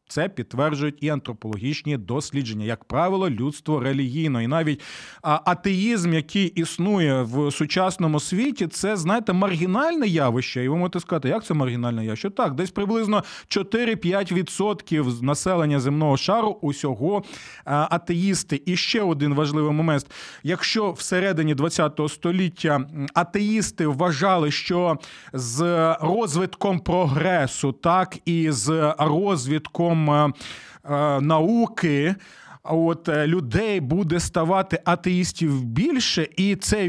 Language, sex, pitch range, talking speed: Ukrainian, male, 145-185 Hz, 110 wpm